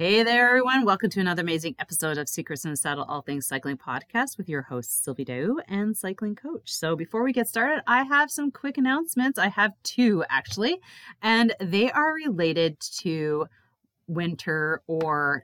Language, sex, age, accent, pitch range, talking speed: English, female, 30-49, American, 150-215 Hz, 175 wpm